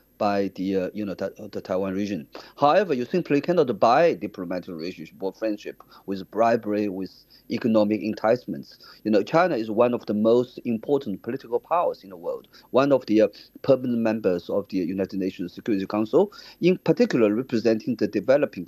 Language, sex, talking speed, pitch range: English, male, 170 wpm, 105-145 Hz